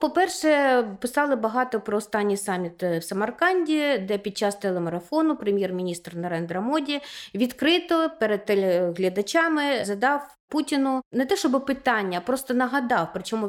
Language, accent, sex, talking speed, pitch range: Ukrainian, native, female, 125 wpm, 190-265 Hz